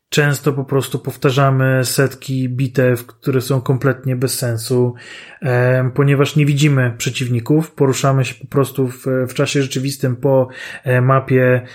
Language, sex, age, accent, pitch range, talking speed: Polish, male, 30-49, native, 130-145 Hz, 125 wpm